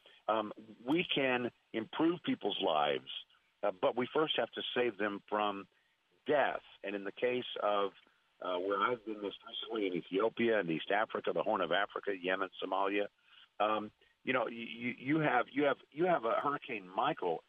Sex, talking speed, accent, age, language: male, 170 wpm, American, 50-69, English